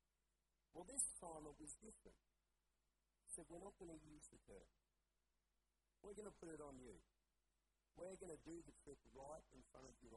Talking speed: 200 wpm